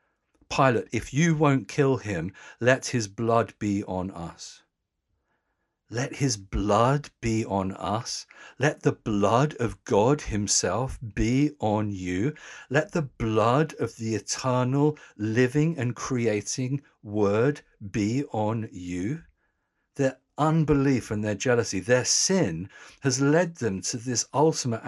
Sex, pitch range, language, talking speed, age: male, 100-140 Hz, English, 130 wpm, 50-69